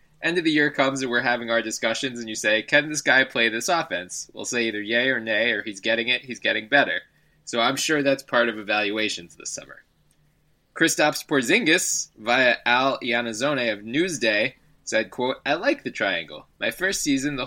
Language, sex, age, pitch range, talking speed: English, male, 20-39, 110-150 Hz, 200 wpm